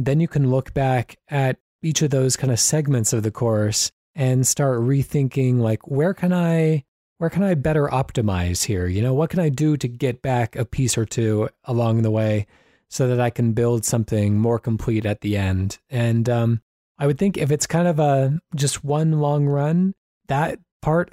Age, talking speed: 20-39, 200 wpm